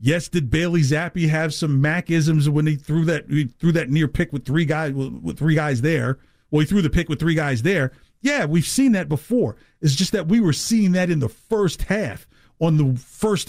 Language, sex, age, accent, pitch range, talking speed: English, male, 50-69, American, 135-185 Hz, 225 wpm